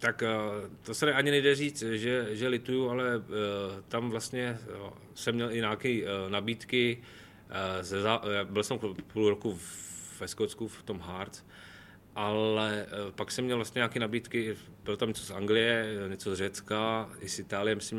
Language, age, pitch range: Czech, 30-49, 95-110 Hz